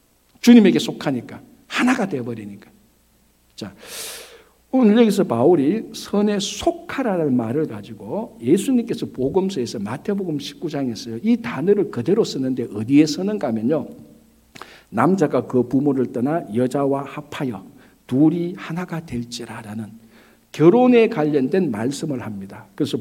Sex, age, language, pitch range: male, 60-79, Korean, 125-205 Hz